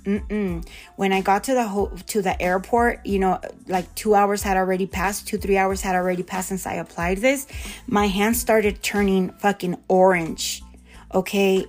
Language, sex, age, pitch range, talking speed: English, female, 30-49, 190-230 Hz, 180 wpm